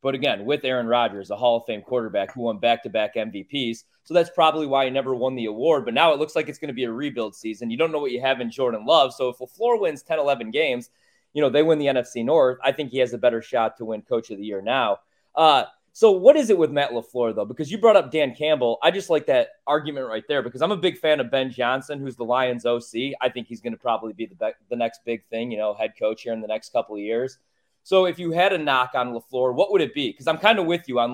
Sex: male